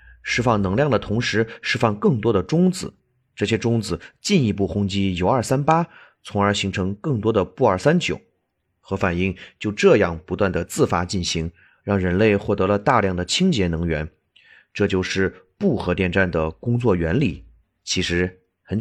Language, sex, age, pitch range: Chinese, male, 30-49, 90-115 Hz